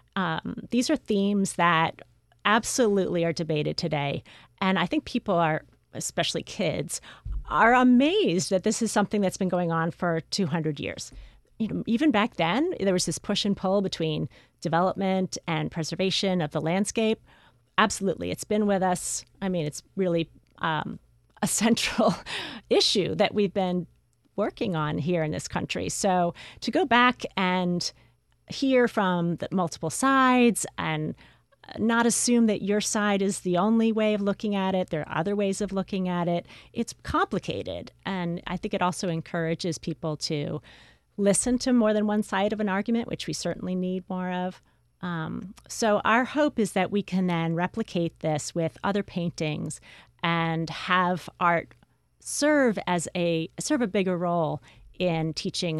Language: English